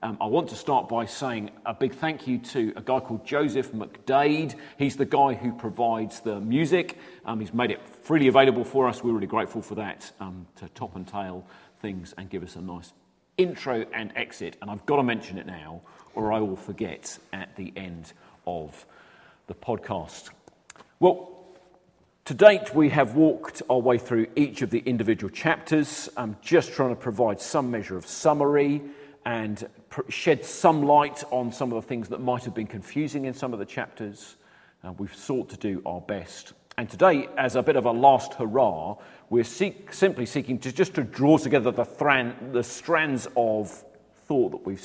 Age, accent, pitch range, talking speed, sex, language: 40-59, British, 110-145 Hz, 195 wpm, male, English